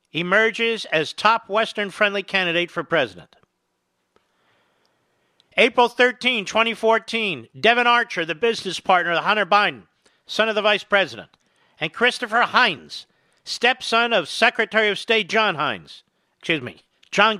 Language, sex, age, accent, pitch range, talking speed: English, male, 50-69, American, 170-220 Hz, 130 wpm